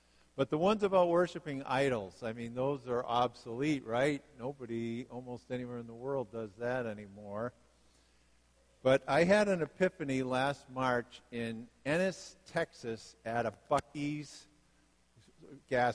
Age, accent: 50-69, American